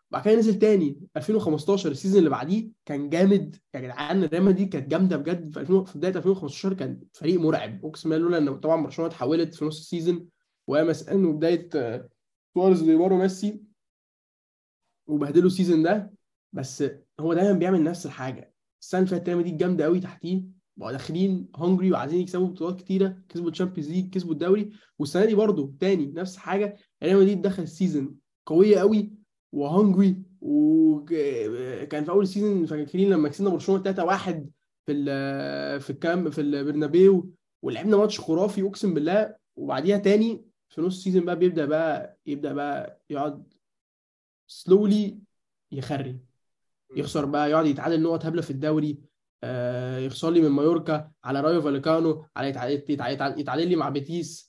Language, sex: Arabic, male